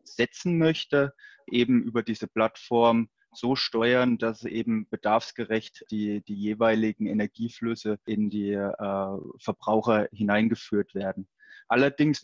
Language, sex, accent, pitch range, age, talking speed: German, male, German, 110-125 Hz, 20-39, 110 wpm